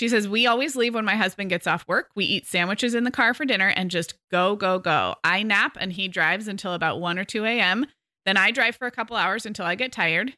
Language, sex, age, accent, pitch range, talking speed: English, female, 20-39, American, 180-225 Hz, 265 wpm